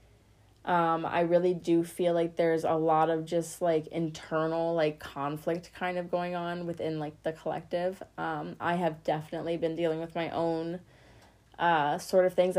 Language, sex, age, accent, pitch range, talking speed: English, female, 20-39, American, 160-185 Hz, 170 wpm